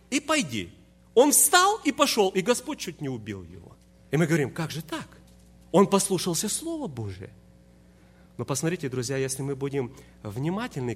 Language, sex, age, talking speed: Russian, male, 30-49, 160 wpm